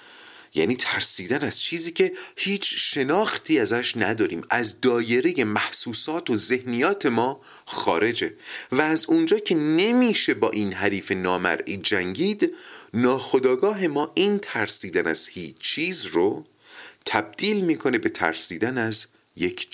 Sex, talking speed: male, 120 wpm